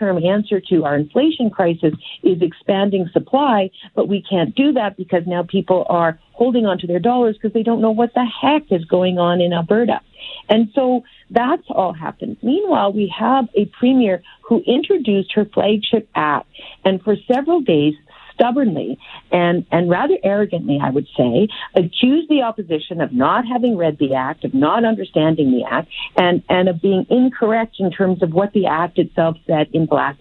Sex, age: female, 50-69